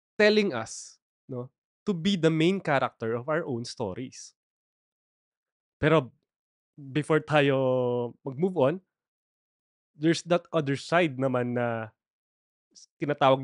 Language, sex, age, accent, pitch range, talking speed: Filipino, male, 20-39, native, 125-200 Hz, 105 wpm